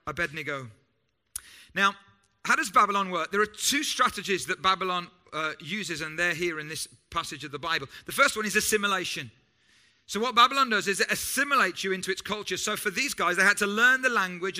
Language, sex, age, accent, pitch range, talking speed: English, male, 40-59, British, 170-215 Hz, 200 wpm